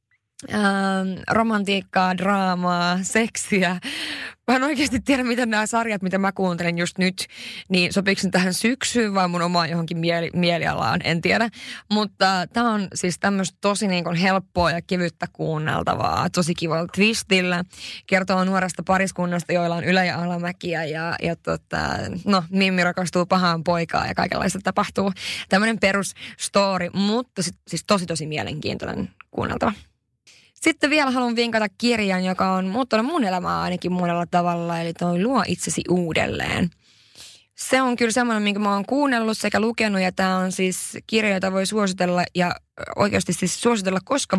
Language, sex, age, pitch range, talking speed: Finnish, female, 20-39, 175-210 Hz, 150 wpm